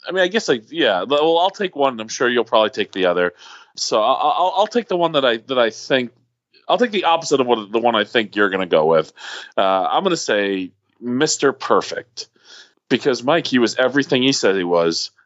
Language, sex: English, male